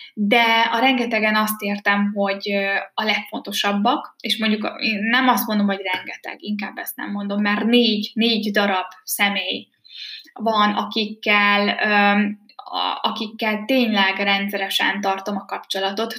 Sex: female